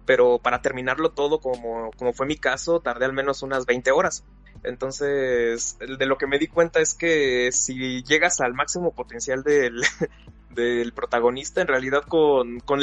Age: 20-39